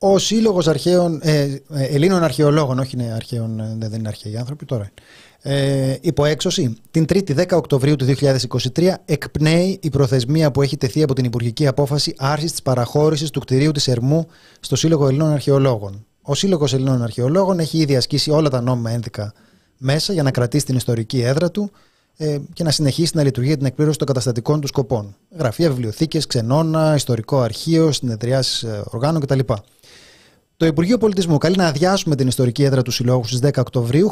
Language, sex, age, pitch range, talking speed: Greek, male, 30-49, 130-160 Hz, 170 wpm